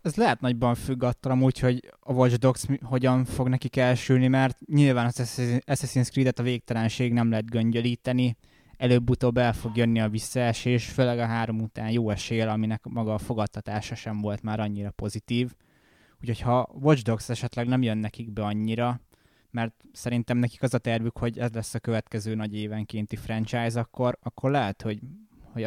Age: 20-39